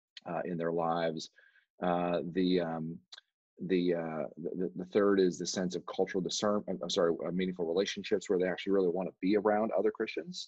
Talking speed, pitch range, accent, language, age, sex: 185 wpm, 85-105 Hz, American, English, 40-59, male